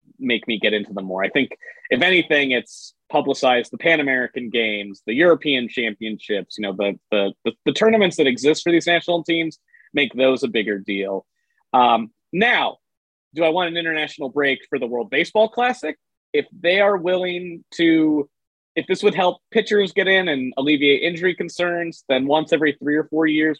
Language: English